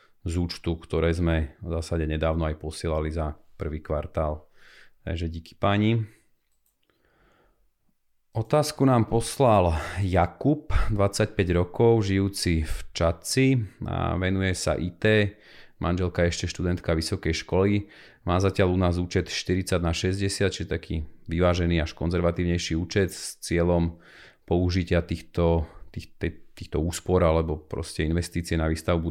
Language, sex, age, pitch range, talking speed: Slovak, male, 40-59, 85-95 Hz, 125 wpm